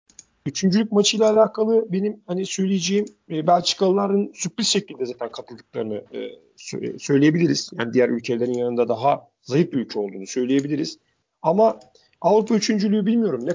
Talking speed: 125 wpm